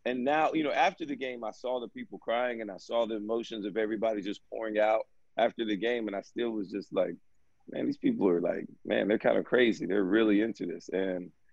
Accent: American